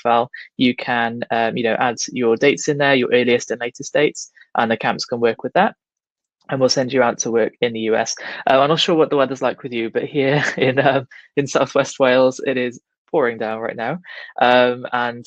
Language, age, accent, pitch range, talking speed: English, 20-39, British, 115-140 Hz, 230 wpm